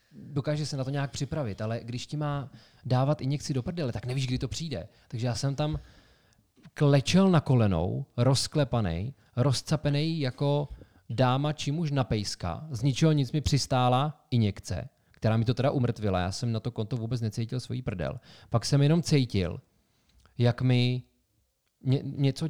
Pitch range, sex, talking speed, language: 110-140 Hz, male, 165 wpm, Czech